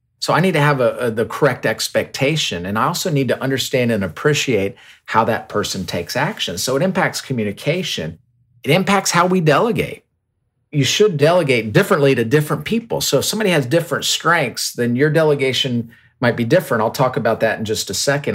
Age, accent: 50-69, American